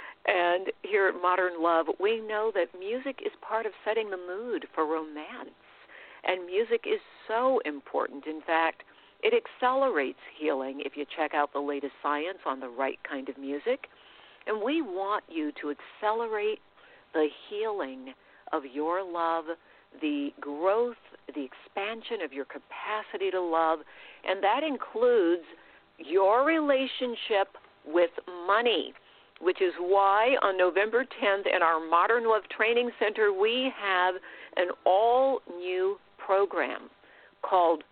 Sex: female